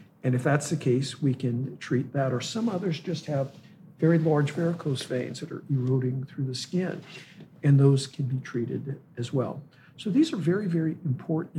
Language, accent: English, American